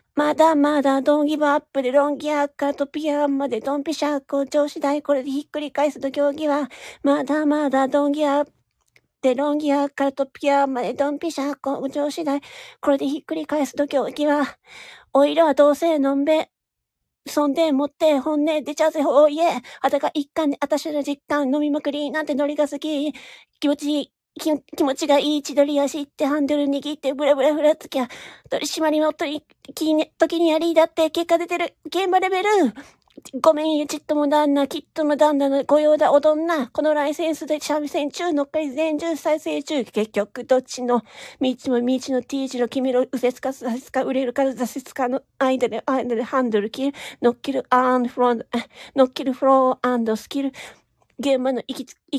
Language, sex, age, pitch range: Japanese, female, 40-59, 270-300 Hz